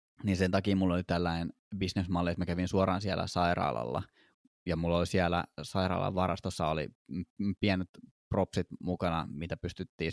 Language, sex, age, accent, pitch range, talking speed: Finnish, male, 20-39, native, 85-100 Hz, 135 wpm